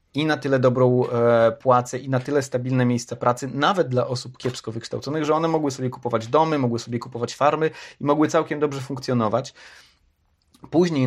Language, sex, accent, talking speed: Polish, male, native, 175 wpm